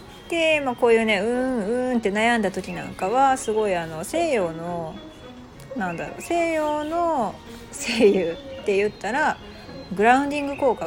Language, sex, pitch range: Japanese, female, 175-255 Hz